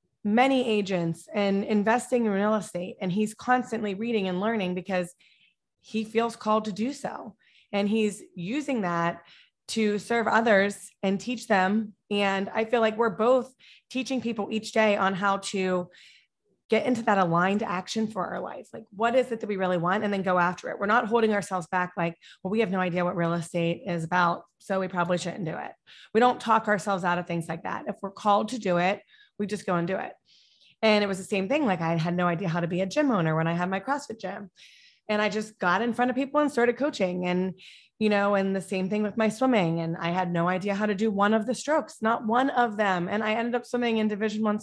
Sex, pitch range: female, 185-230 Hz